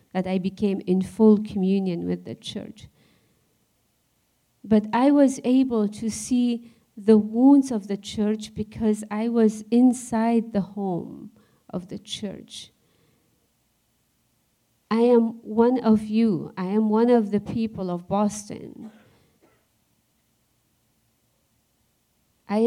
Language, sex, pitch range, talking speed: English, female, 200-240 Hz, 115 wpm